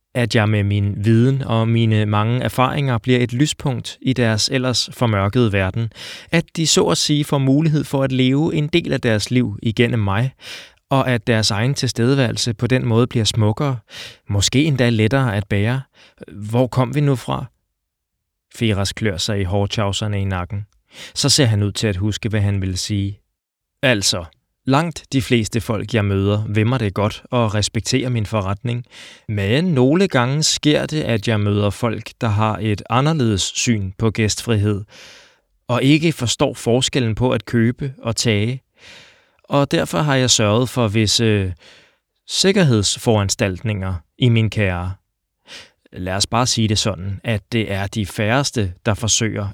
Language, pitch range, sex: Danish, 105-130 Hz, male